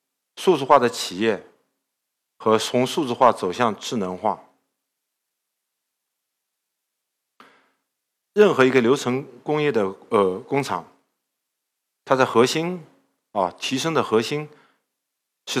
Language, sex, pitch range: Chinese, male, 90-125 Hz